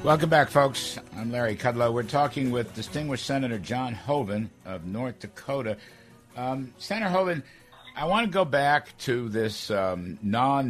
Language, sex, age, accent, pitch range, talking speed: English, male, 60-79, American, 95-125 Hz, 155 wpm